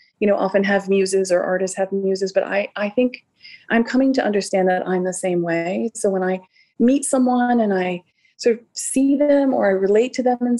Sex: female